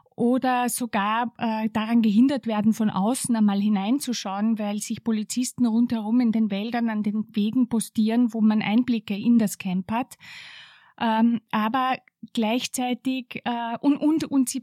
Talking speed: 150 wpm